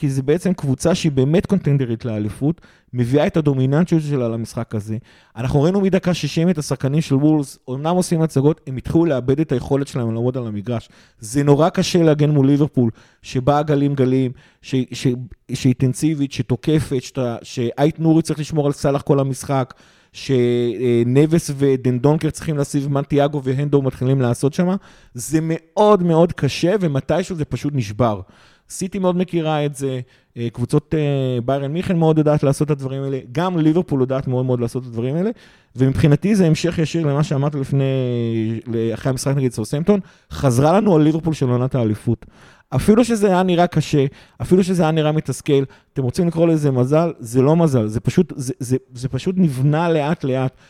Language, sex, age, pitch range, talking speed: Hebrew, male, 30-49, 125-155 Hz, 160 wpm